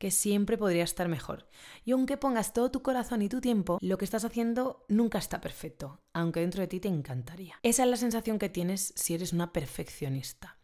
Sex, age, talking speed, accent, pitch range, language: female, 20-39, 210 wpm, Spanish, 160-220 Hz, Spanish